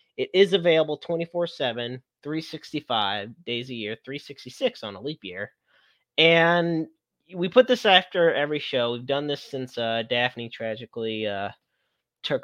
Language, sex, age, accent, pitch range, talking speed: English, male, 30-49, American, 115-140 Hz, 140 wpm